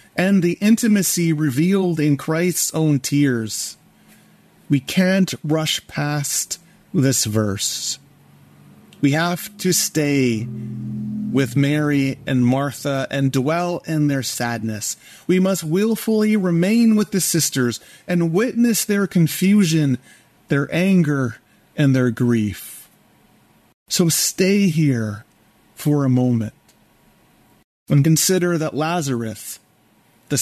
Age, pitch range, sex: 30-49, 135-185 Hz, male